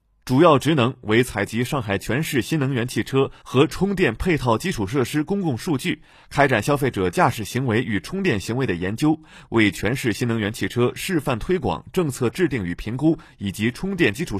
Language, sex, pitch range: Chinese, male, 105-150 Hz